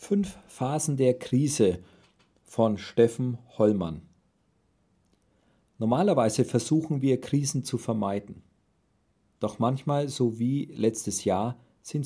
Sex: male